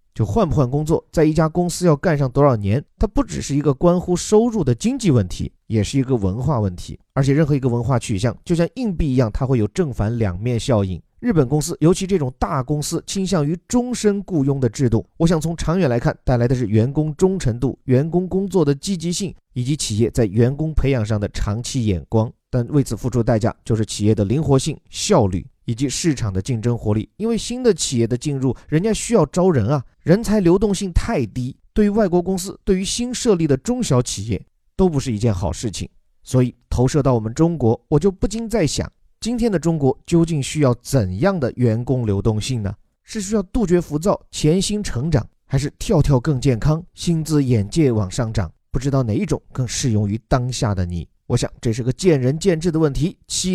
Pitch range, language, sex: 115-175 Hz, Chinese, male